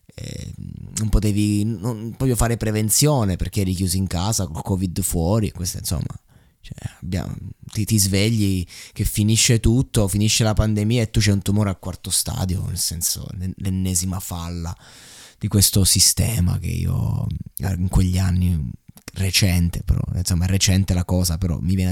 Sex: male